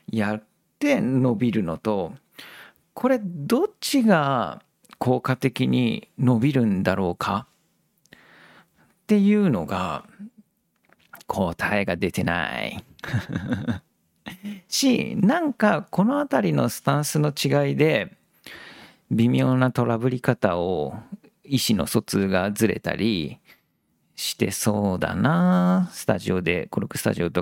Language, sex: Japanese, male